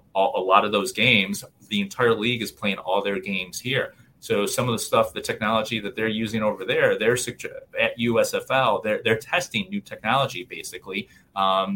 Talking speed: 185 wpm